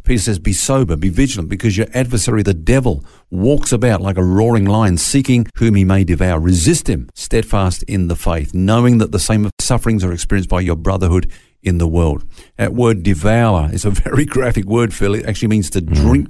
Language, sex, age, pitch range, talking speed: English, male, 50-69, 90-115 Hz, 205 wpm